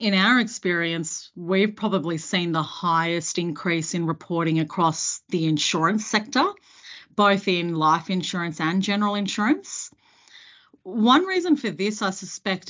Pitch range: 165-200 Hz